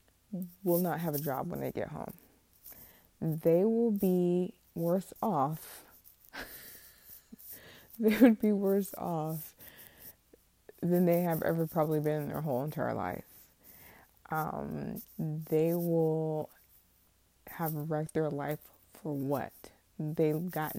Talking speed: 120 wpm